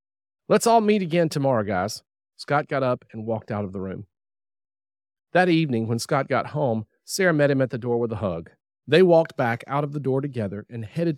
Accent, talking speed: American, 215 wpm